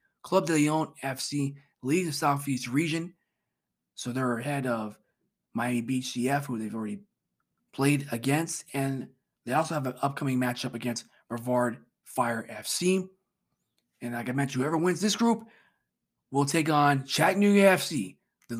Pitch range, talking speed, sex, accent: 125-170 Hz, 145 wpm, male, American